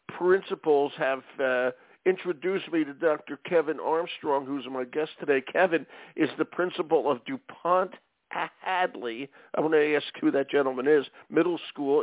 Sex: male